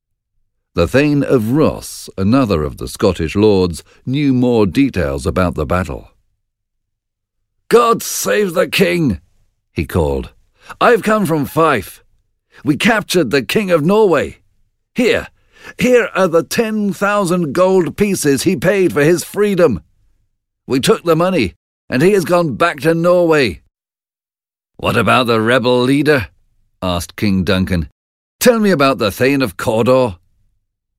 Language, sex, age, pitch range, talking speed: Slovak, male, 50-69, 100-155 Hz, 135 wpm